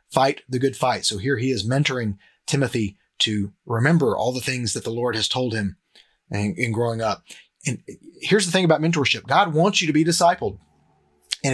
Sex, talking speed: male, 200 wpm